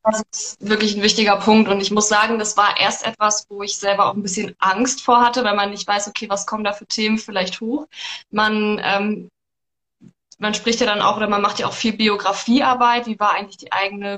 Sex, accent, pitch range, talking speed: female, German, 200-225 Hz, 230 wpm